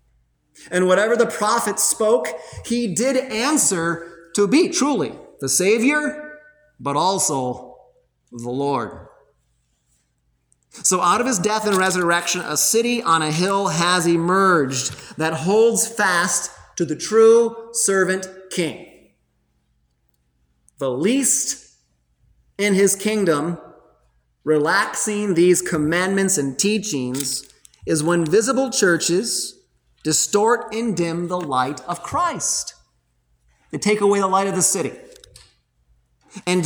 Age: 30-49